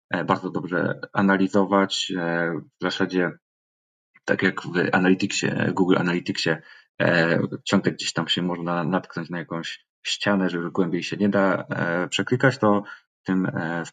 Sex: male